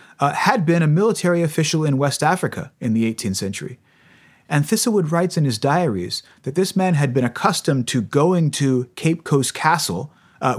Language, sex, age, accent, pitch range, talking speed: English, male, 30-49, American, 125-160 Hz, 180 wpm